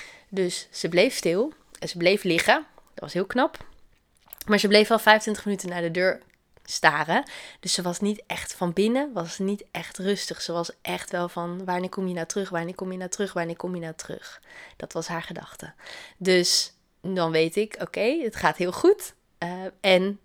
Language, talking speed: Dutch, 205 wpm